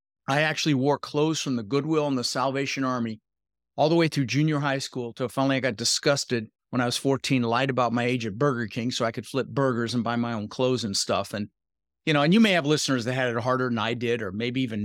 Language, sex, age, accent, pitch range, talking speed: English, male, 40-59, American, 120-145 Hz, 260 wpm